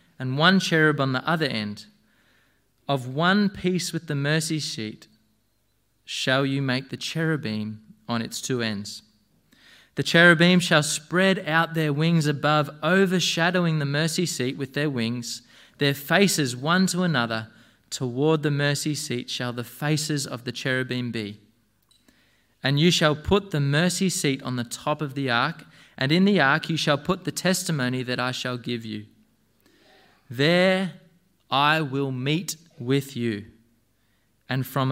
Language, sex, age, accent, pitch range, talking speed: English, male, 20-39, Australian, 120-160 Hz, 155 wpm